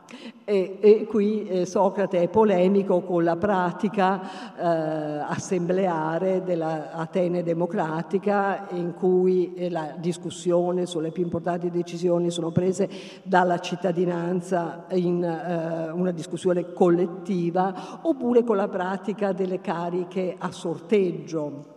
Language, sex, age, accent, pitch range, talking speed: Italian, female, 50-69, native, 175-210 Hz, 110 wpm